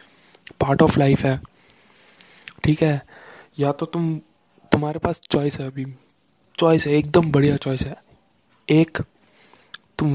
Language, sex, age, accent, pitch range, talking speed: Hindi, male, 20-39, native, 135-150 Hz, 130 wpm